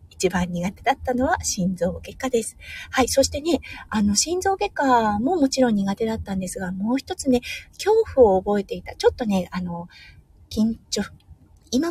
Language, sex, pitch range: Japanese, female, 185-265 Hz